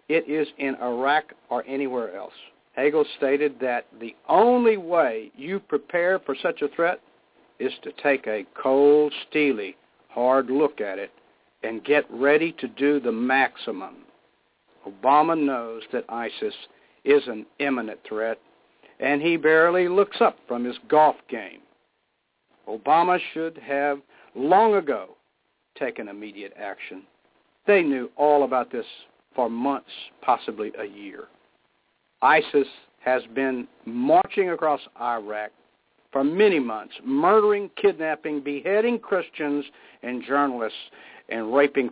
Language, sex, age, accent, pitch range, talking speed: English, male, 60-79, American, 125-160 Hz, 125 wpm